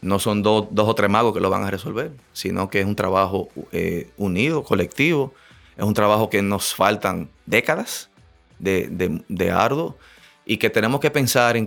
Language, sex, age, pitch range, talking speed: Spanish, male, 30-49, 100-115 Hz, 190 wpm